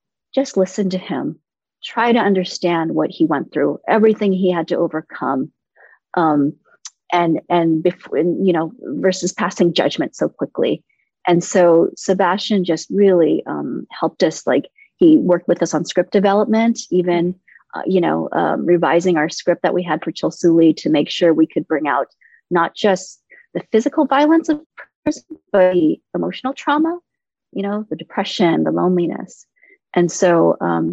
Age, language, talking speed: 30-49, English, 165 wpm